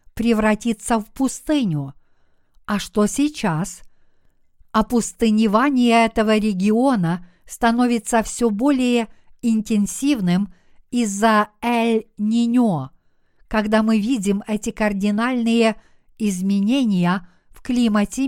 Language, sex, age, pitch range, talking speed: Russian, female, 50-69, 190-230 Hz, 75 wpm